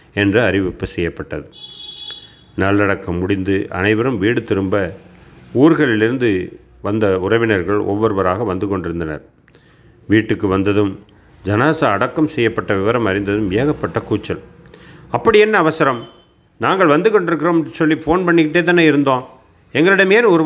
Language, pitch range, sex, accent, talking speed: Tamil, 90-125 Hz, male, native, 105 wpm